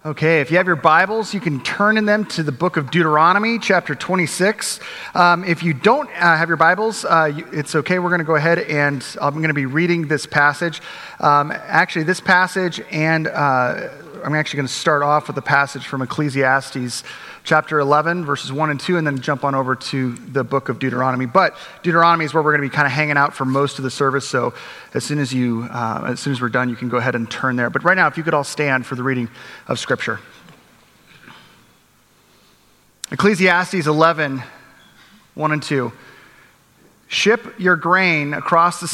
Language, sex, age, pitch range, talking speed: English, male, 30-49, 140-180 Hz, 205 wpm